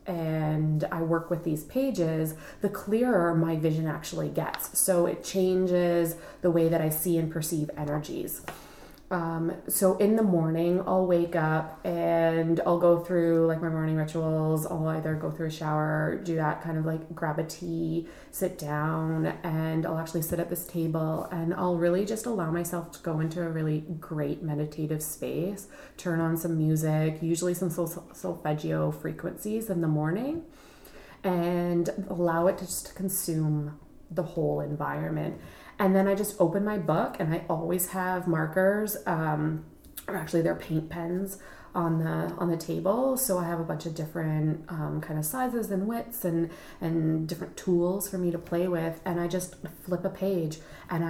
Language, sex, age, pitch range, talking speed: English, female, 20-39, 160-180 Hz, 175 wpm